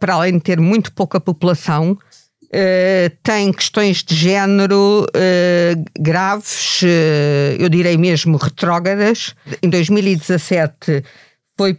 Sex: female